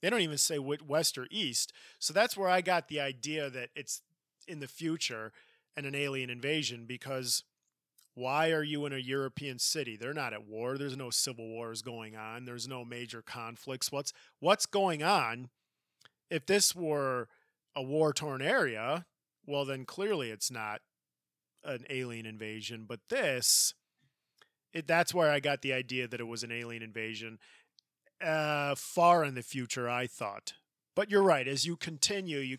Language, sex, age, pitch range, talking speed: English, male, 40-59, 120-150 Hz, 170 wpm